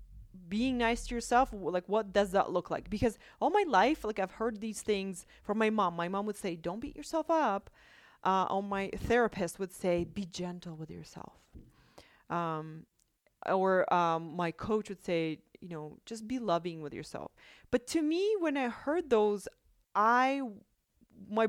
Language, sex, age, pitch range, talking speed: English, female, 30-49, 190-250 Hz, 180 wpm